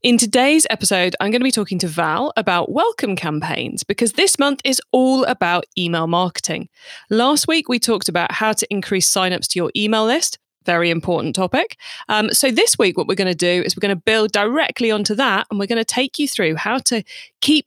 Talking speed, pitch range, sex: 215 wpm, 185-250 Hz, female